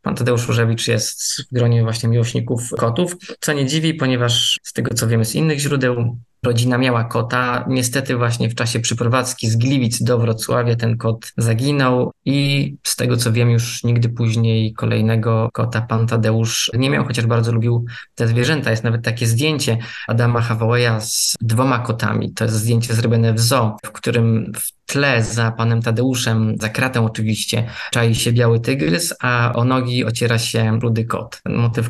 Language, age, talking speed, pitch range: Polish, 20-39, 175 wpm, 115-130 Hz